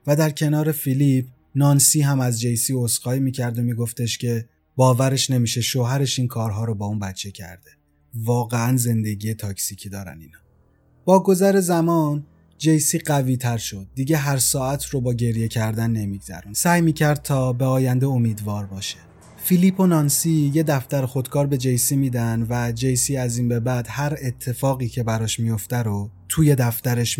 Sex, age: male, 30-49